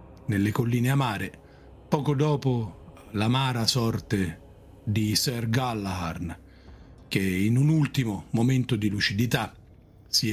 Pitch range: 90-125 Hz